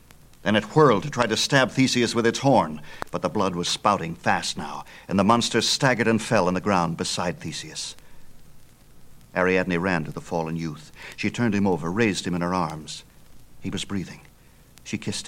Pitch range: 90-120 Hz